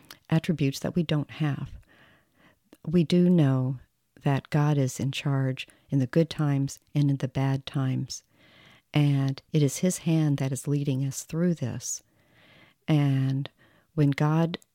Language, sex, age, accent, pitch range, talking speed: English, female, 50-69, American, 135-155 Hz, 145 wpm